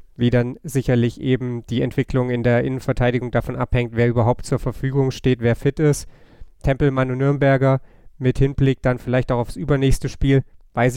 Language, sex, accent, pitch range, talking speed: German, male, German, 120-135 Hz, 170 wpm